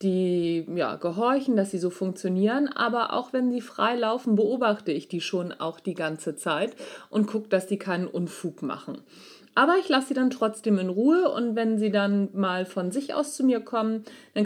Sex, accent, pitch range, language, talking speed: female, German, 195-255 Hz, German, 195 wpm